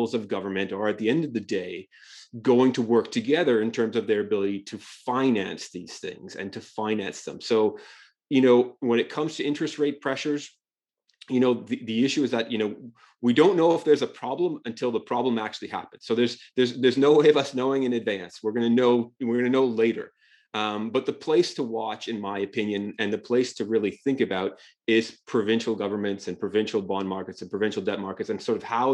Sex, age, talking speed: male, 30-49, 225 wpm